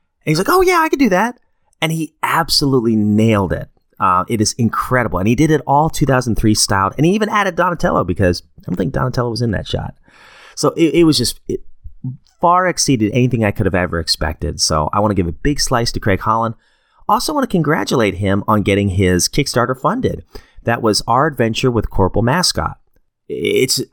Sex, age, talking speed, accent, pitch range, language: male, 30-49, 205 wpm, American, 95-145 Hz, English